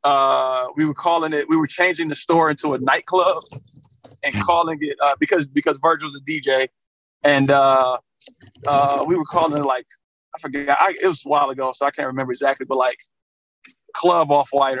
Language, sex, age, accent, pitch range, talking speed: English, male, 30-49, American, 140-175 Hz, 195 wpm